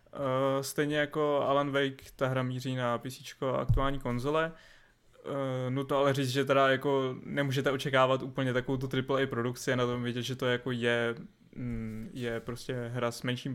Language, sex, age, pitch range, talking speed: Czech, male, 20-39, 125-140 Hz, 180 wpm